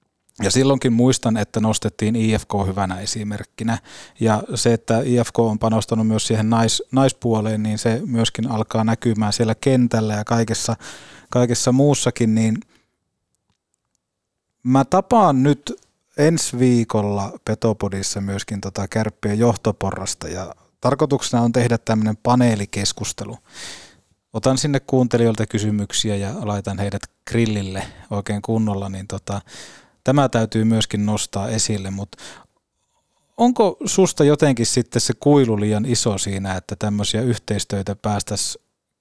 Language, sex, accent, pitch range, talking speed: Finnish, male, native, 105-125 Hz, 120 wpm